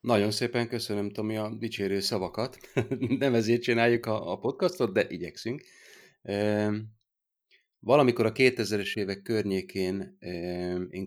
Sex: male